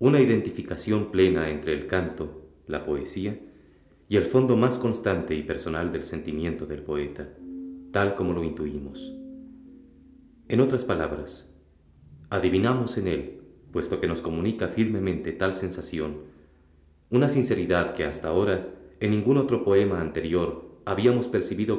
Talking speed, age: 130 wpm, 40-59